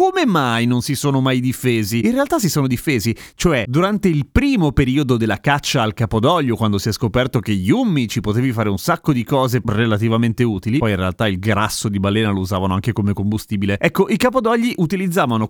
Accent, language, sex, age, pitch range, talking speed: native, Italian, male, 30-49, 110-160 Hz, 200 wpm